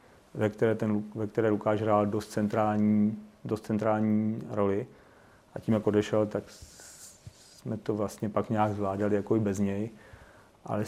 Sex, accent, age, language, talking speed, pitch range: male, native, 40-59, Czech, 155 wpm, 105-110 Hz